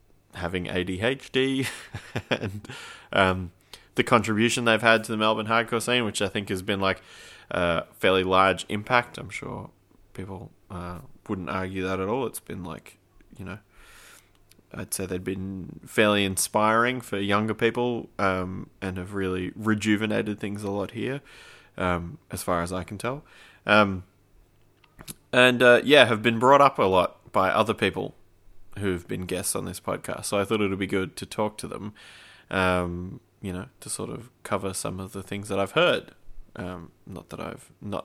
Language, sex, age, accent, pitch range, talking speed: English, male, 20-39, Australian, 95-115 Hz, 175 wpm